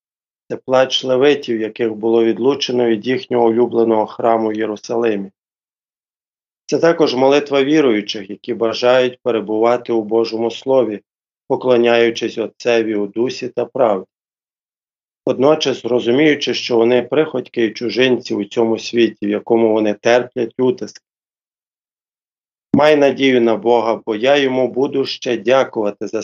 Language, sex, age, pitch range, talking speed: Ukrainian, male, 40-59, 115-135 Hz, 125 wpm